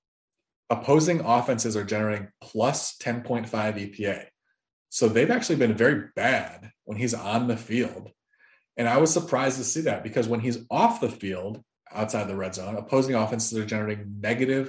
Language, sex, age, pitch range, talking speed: English, male, 20-39, 105-125 Hz, 165 wpm